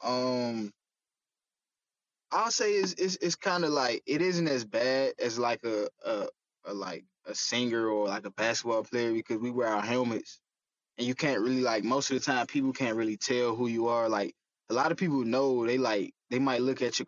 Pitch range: 120-140 Hz